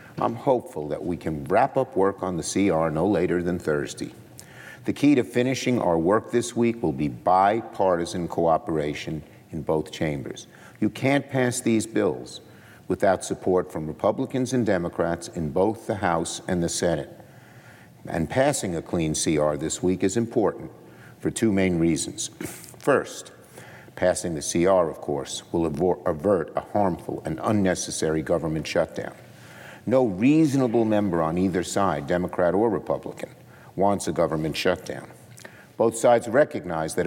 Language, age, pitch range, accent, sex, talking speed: English, 50-69, 85-115 Hz, American, male, 150 wpm